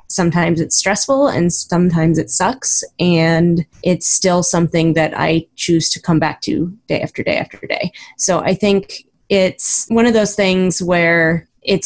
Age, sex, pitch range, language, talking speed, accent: 20-39, female, 165-185 Hz, English, 165 wpm, American